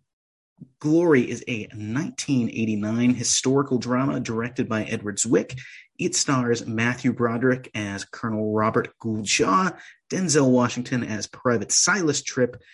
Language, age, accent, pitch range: English, 30-49, American, 110-140 Hz